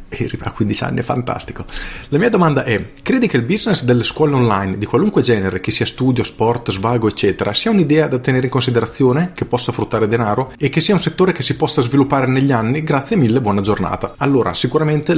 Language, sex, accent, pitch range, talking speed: Italian, male, native, 105-130 Hz, 205 wpm